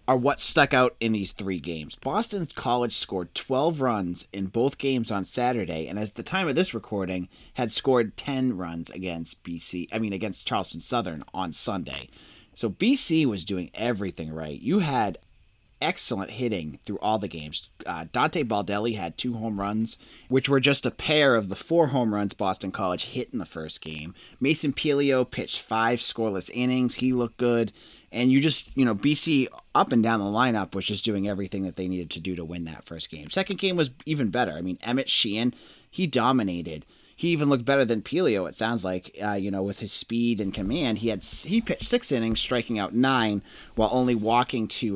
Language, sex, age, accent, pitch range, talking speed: English, male, 30-49, American, 95-130 Hz, 200 wpm